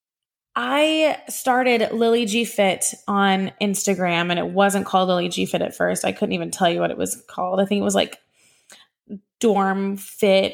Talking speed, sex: 180 wpm, female